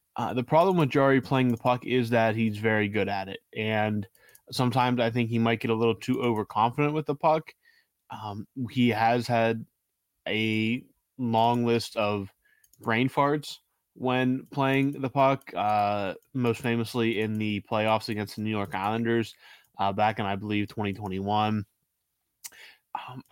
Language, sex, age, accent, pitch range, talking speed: English, male, 20-39, American, 110-130 Hz, 155 wpm